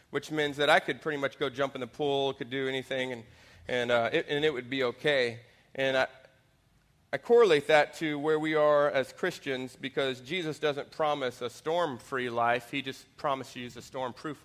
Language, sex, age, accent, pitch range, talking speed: English, male, 30-49, American, 130-150 Hz, 195 wpm